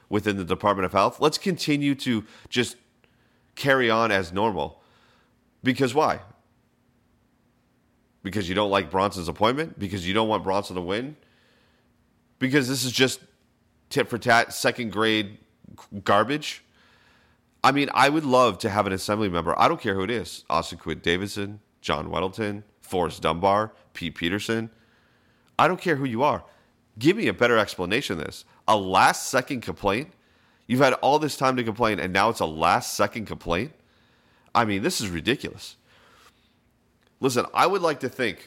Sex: male